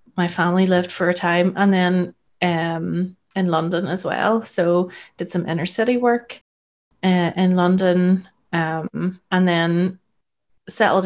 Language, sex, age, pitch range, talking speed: English, female, 30-49, 175-205 Hz, 140 wpm